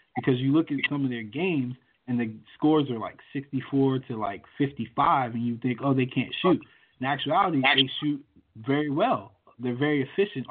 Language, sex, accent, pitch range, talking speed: English, male, American, 120-140 Hz, 190 wpm